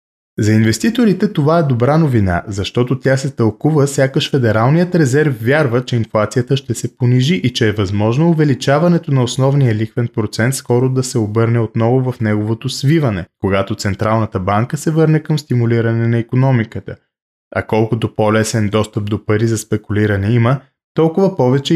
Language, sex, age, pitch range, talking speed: Bulgarian, male, 20-39, 110-150 Hz, 155 wpm